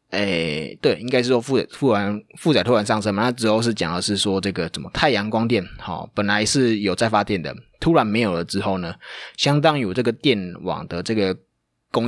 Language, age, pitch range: Chinese, 20-39, 95-115 Hz